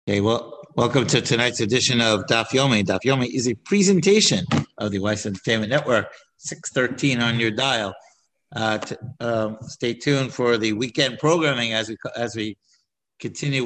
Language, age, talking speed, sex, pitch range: English, 50-69, 165 wpm, male, 115-145 Hz